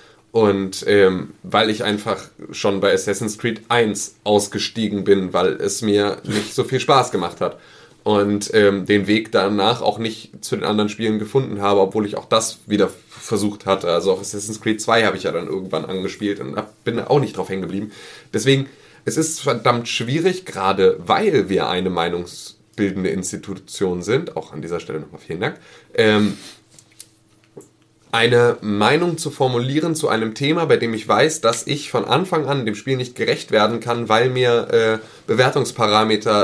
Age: 30-49